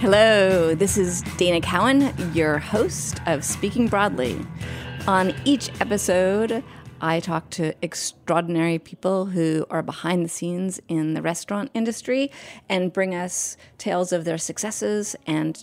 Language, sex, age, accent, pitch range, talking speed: English, female, 30-49, American, 160-200 Hz, 135 wpm